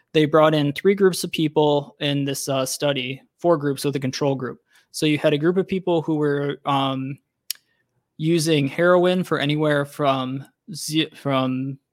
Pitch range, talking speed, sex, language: 140-155 Hz, 175 wpm, male, English